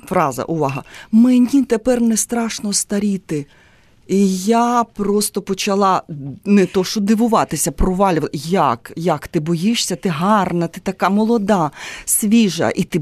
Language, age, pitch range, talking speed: Ukrainian, 30-49, 160-225 Hz, 130 wpm